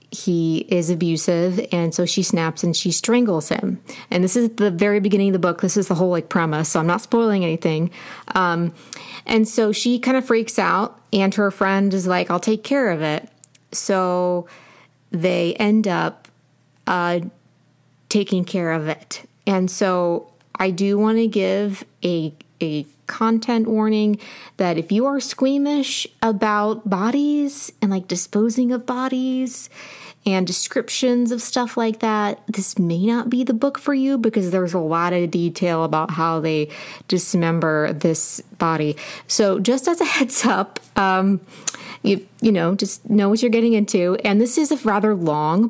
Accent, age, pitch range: American, 30-49, 175-225 Hz